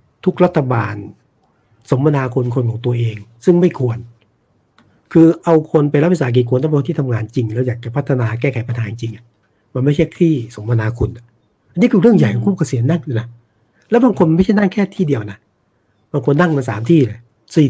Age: 60-79